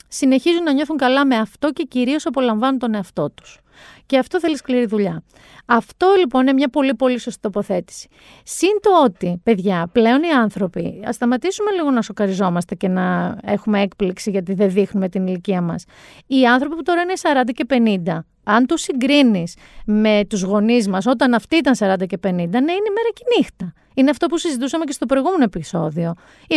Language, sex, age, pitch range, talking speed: Greek, female, 40-59, 200-285 Hz, 185 wpm